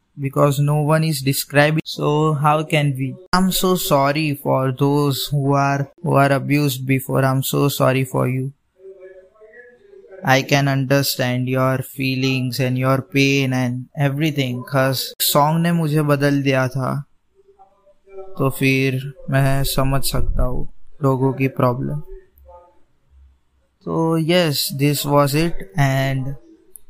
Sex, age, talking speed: male, 20-39, 125 wpm